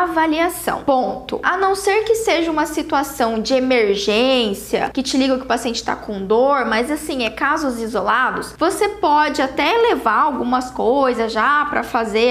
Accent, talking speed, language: Brazilian, 165 wpm, Portuguese